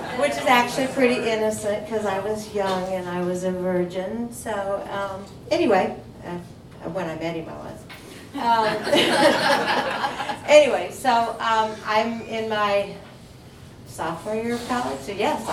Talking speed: 145 wpm